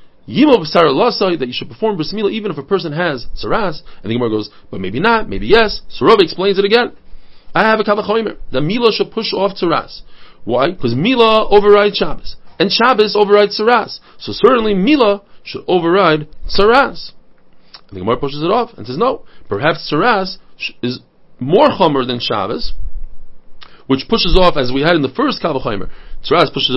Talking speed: 175 wpm